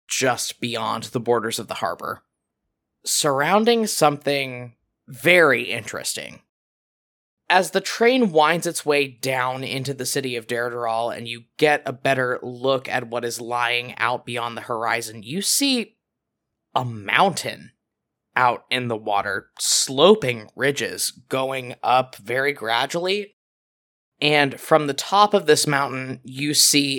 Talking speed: 135 wpm